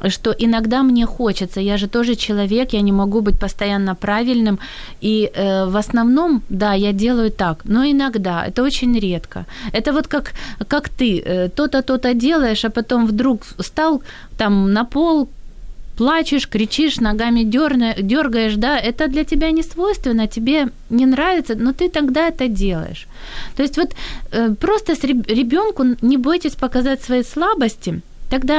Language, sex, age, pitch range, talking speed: Ukrainian, female, 20-39, 205-265 Hz, 155 wpm